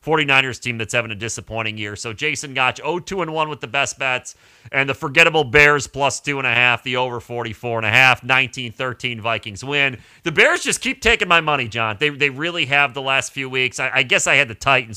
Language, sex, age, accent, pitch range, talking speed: English, male, 40-59, American, 115-140 Hz, 200 wpm